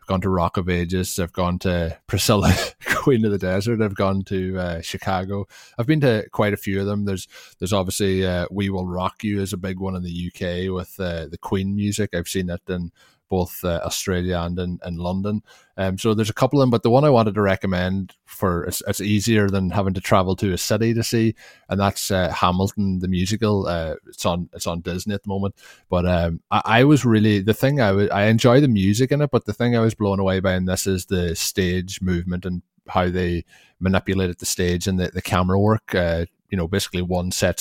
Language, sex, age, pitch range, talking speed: English, male, 20-39, 90-100 Hz, 235 wpm